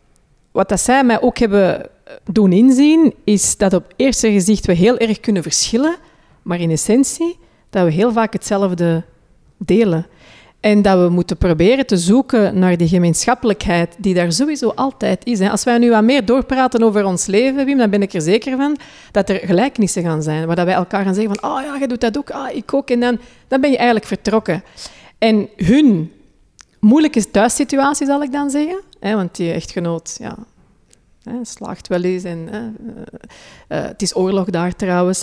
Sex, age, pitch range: female, 40-59, 180-245 Hz